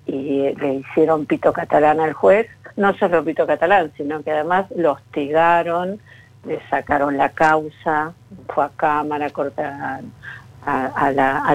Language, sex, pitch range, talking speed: Spanish, female, 150-195 Hz, 140 wpm